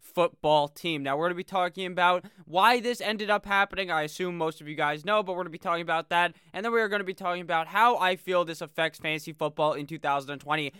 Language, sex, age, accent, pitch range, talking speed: English, male, 20-39, American, 150-180 Hz, 260 wpm